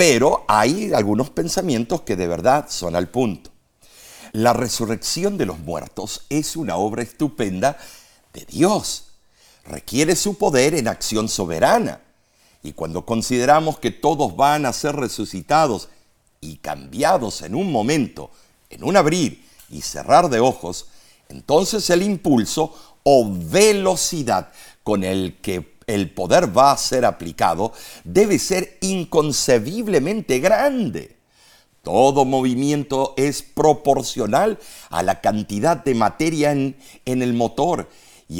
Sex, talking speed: male, 125 wpm